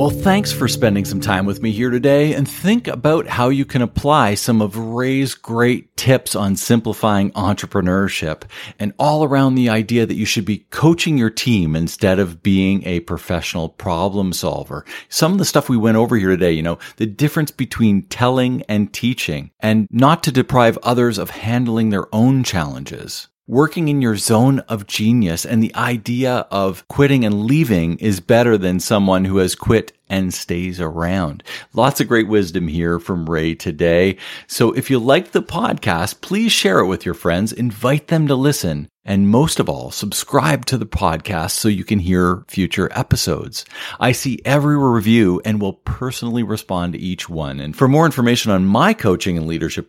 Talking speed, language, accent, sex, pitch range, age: 185 wpm, English, American, male, 95-130 Hz, 50-69